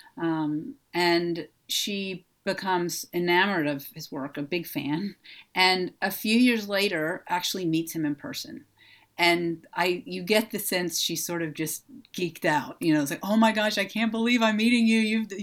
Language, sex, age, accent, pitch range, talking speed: English, female, 40-59, American, 170-220 Hz, 185 wpm